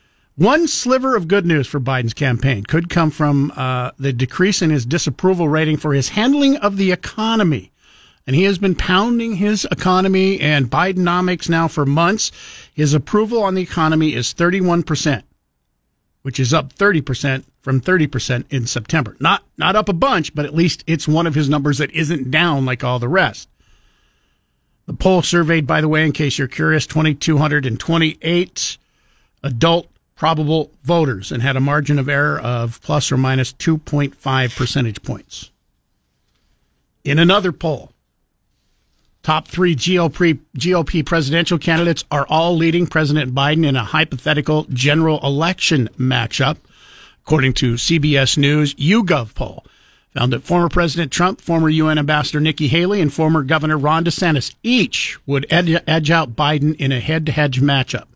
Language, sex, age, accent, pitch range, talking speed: English, male, 50-69, American, 140-170 Hz, 155 wpm